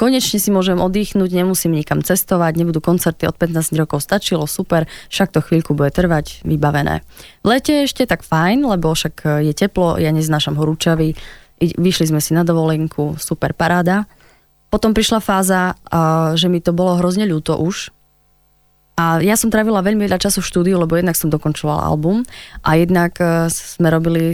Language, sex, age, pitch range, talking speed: Slovak, female, 20-39, 160-195 Hz, 170 wpm